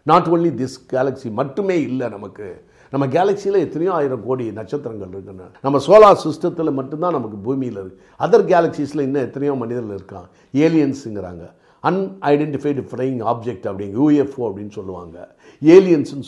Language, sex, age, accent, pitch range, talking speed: Tamil, male, 50-69, native, 105-160 Hz, 160 wpm